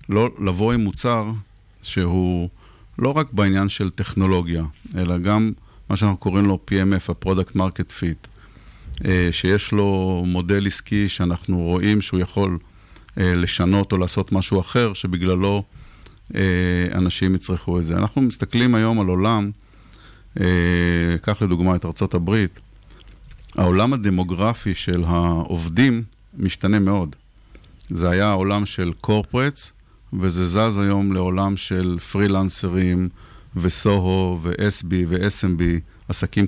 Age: 50-69